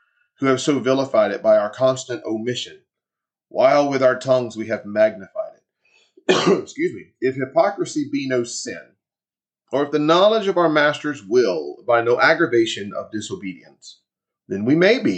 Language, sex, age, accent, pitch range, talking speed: English, male, 30-49, American, 120-160 Hz, 160 wpm